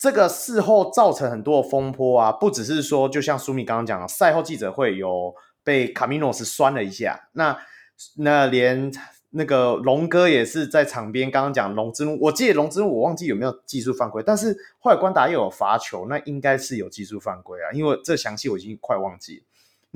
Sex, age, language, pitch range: male, 30-49, Chinese, 125-180 Hz